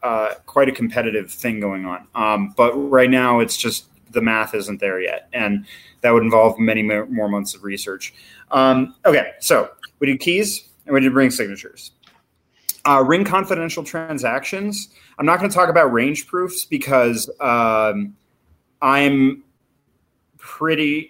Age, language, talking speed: 30-49, English, 155 wpm